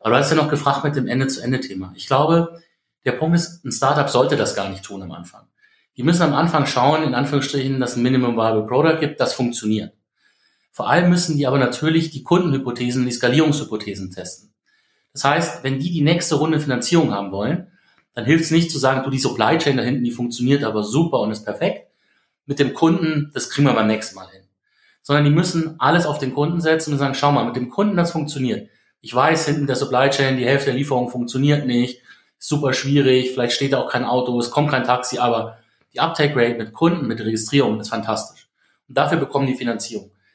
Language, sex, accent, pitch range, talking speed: German, male, German, 120-150 Hz, 215 wpm